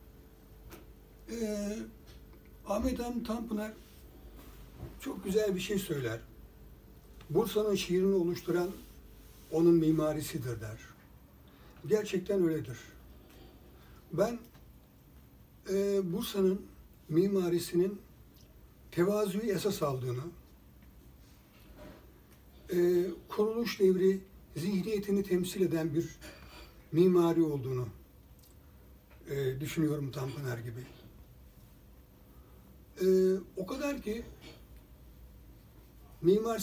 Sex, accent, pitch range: male, native, 135-190 Hz